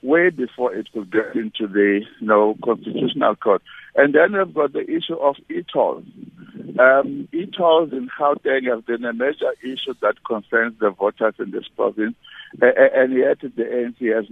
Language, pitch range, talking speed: English, 115-155 Hz, 175 wpm